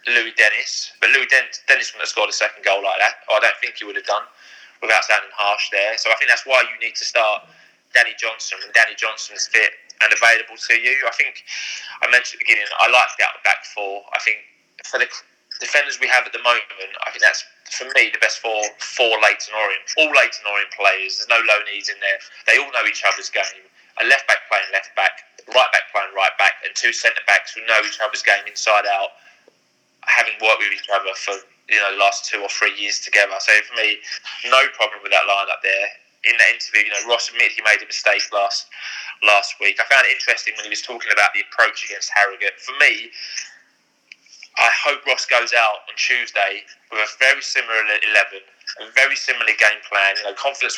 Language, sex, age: English, male, 20-39